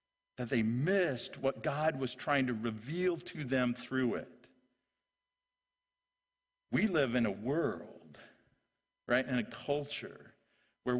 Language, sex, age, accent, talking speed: English, male, 50-69, American, 125 wpm